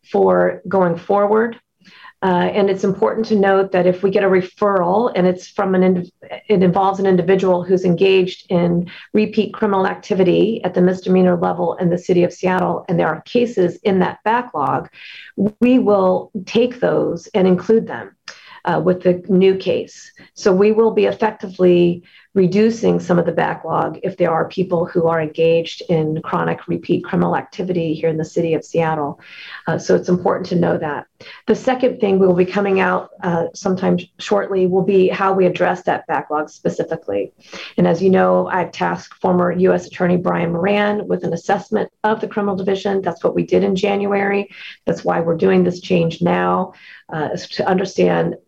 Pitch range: 175-200 Hz